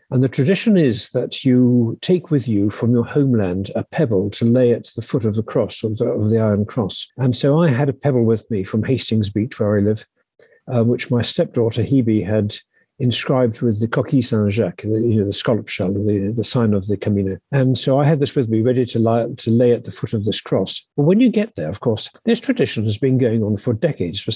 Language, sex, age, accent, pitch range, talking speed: English, male, 50-69, British, 110-140 Hz, 235 wpm